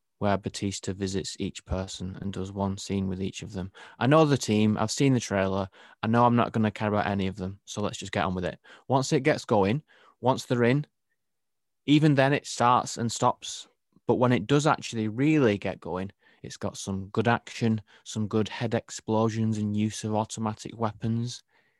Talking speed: 205 wpm